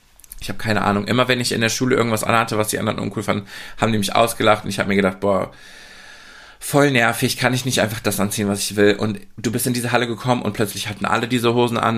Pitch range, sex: 105-135 Hz, male